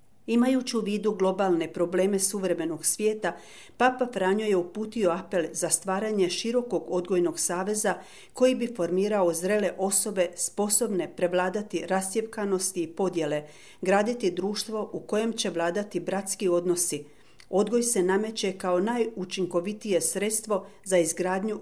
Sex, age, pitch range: female, 40-59, 175-210 Hz